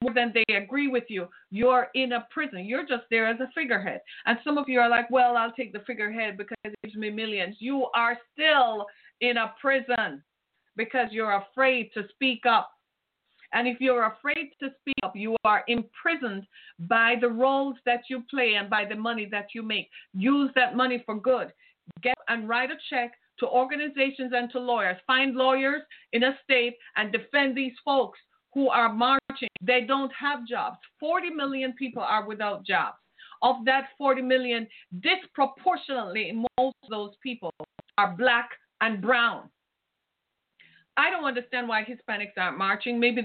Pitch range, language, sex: 225-275 Hz, English, female